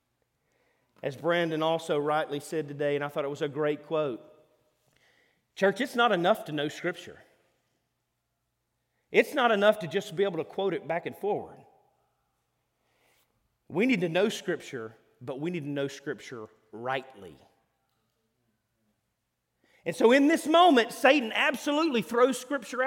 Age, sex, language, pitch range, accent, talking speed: 40-59, male, English, 150-220 Hz, American, 145 wpm